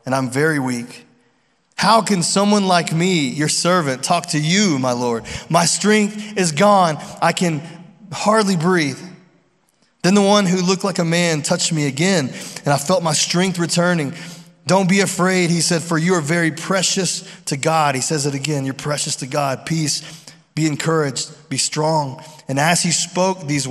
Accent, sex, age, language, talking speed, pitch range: American, male, 20-39, English, 180 wpm, 155-185 Hz